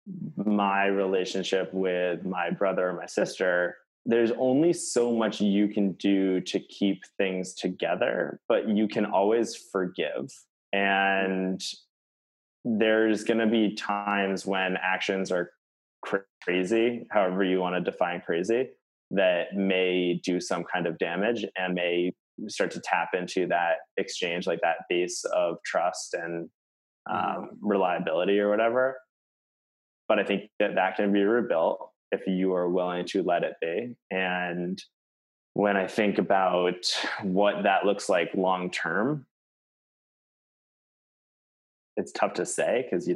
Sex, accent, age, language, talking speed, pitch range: male, American, 20-39, English, 135 wpm, 90-105 Hz